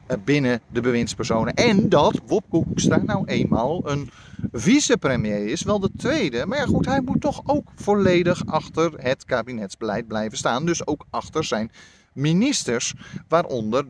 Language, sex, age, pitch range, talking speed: Dutch, male, 40-59, 115-175 Hz, 145 wpm